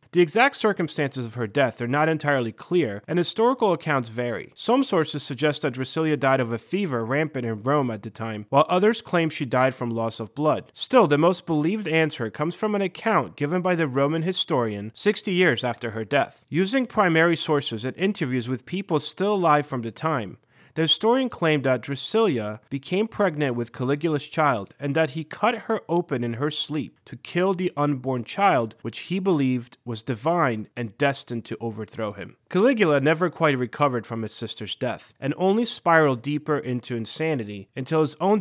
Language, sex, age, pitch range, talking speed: English, male, 30-49, 120-175 Hz, 185 wpm